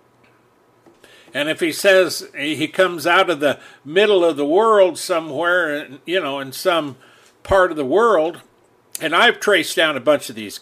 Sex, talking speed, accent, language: male, 170 wpm, American, English